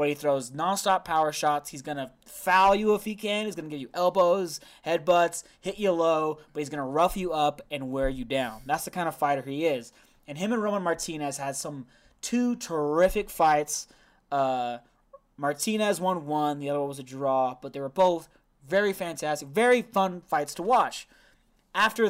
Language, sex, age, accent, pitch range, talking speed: English, male, 20-39, American, 150-220 Hz, 190 wpm